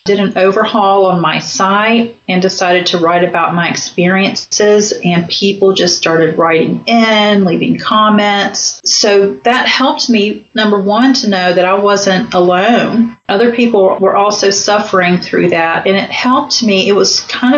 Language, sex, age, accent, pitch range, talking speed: English, female, 40-59, American, 180-215 Hz, 160 wpm